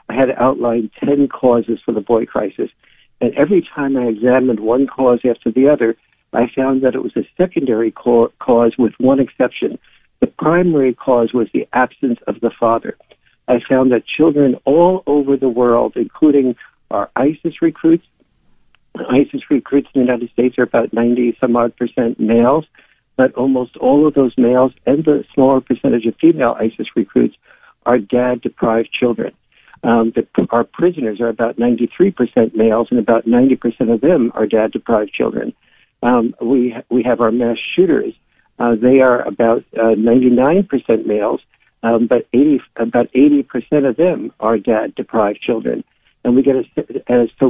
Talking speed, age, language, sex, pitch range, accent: 160 wpm, 60-79, English, male, 115-135 Hz, American